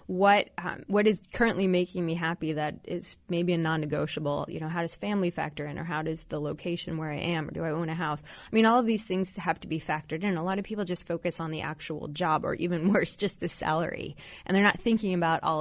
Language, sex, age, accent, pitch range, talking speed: English, female, 20-39, American, 160-210 Hz, 260 wpm